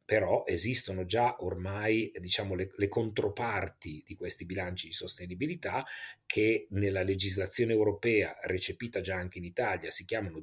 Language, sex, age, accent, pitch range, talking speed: Italian, male, 30-49, native, 95-115 Hz, 130 wpm